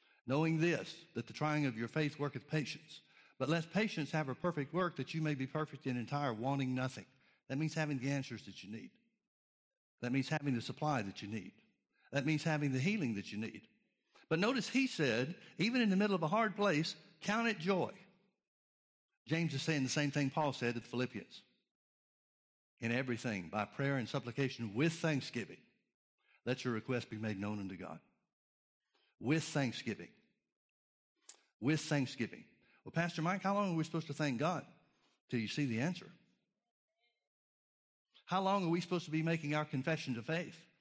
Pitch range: 125-170 Hz